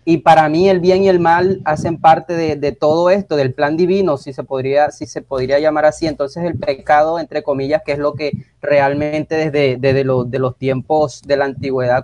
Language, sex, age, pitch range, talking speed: Spanish, male, 30-49, 140-170 Hz, 220 wpm